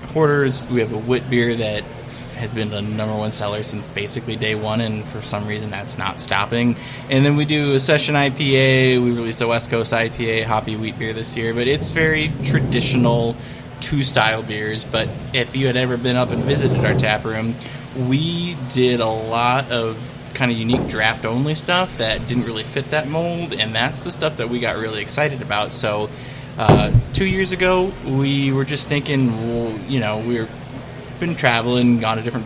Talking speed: 195 wpm